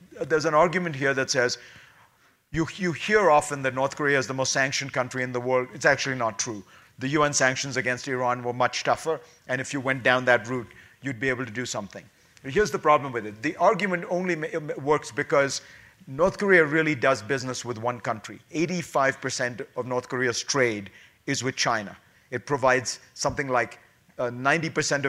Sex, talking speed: male, 185 wpm